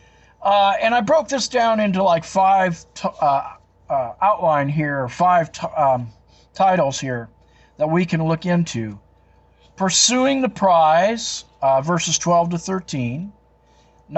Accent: American